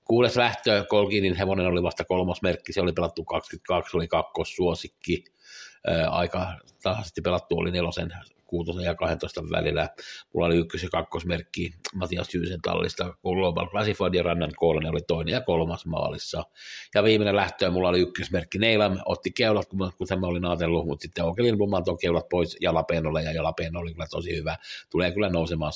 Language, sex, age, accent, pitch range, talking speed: Finnish, male, 60-79, native, 85-95 Hz, 150 wpm